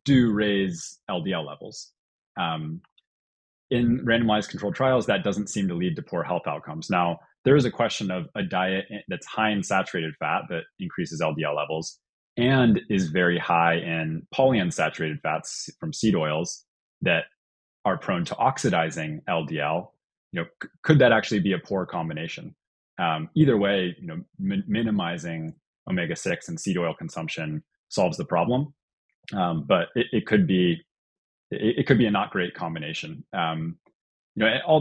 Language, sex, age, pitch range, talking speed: English, male, 20-39, 80-115 Hz, 160 wpm